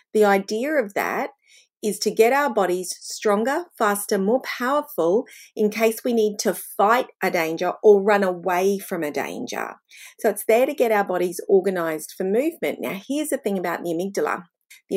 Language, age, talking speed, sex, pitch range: English, 40-59, 180 wpm, female, 190-245 Hz